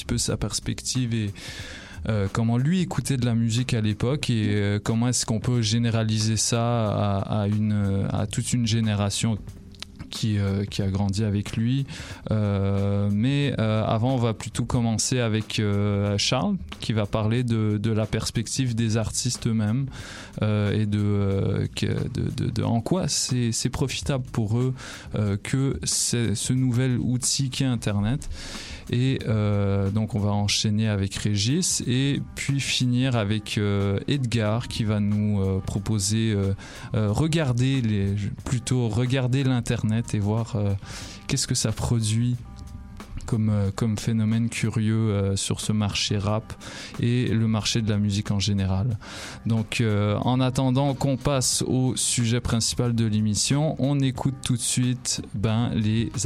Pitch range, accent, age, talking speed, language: 105-125 Hz, French, 20-39, 160 wpm, French